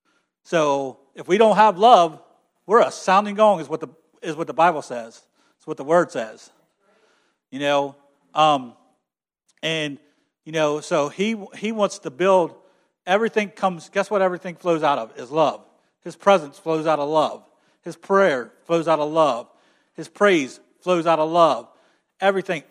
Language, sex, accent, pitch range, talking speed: English, male, American, 145-190 Hz, 170 wpm